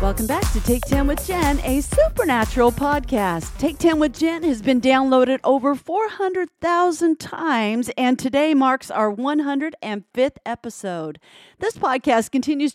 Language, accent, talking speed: English, American, 135 wpm